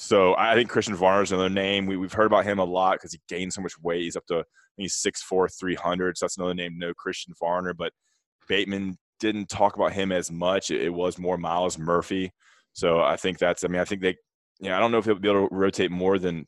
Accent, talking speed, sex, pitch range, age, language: American, 260 wpm, male, 90-100 Hz, 20-39, English